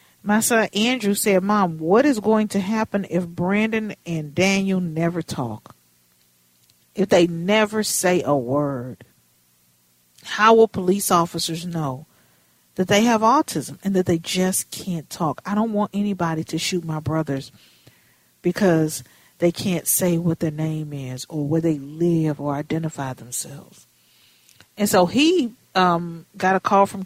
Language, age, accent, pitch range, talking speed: English, 50-69, American, 145-215 Hz, 150 wpm